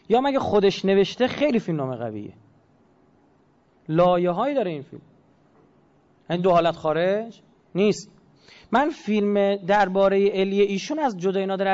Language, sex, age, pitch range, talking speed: Persian, male, 30-49, 160-200 Hz, 125 wpm